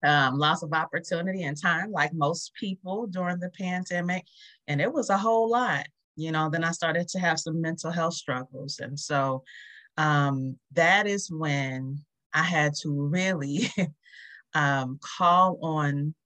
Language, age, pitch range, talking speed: English, 30-49, 135-165 Hz, 155 wpm